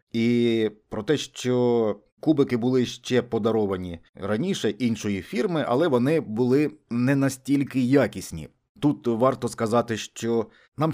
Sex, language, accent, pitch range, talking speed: male, Ukrainian, native, 115-140 Hz, 120 wpm